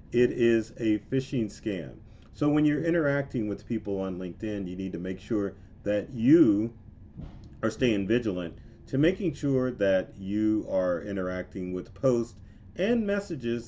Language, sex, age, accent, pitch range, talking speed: English, male, 40-59, American, 95-135 Hz, 150 wpm